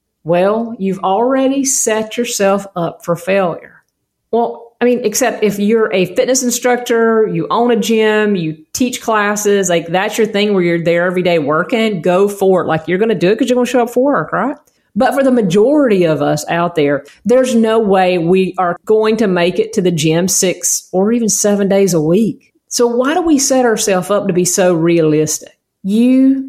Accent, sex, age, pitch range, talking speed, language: American, female, 40-59, 175-230 Hz, 205 wpm, English